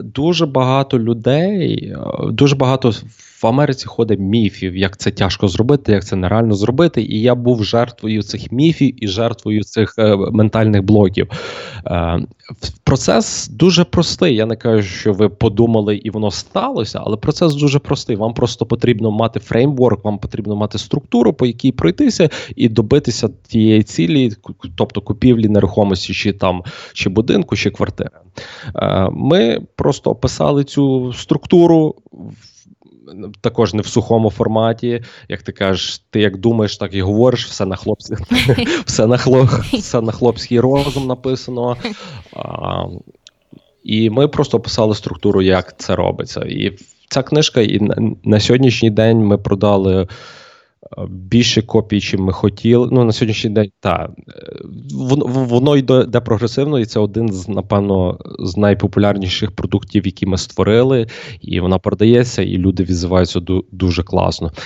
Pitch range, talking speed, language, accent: 100-125 Hz, 135 wpm, Ukrainian, native